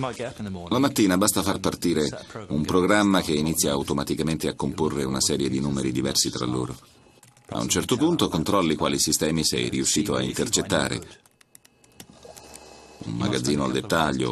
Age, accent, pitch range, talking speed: 40-59, native, 70-100 Hz, 145 wpm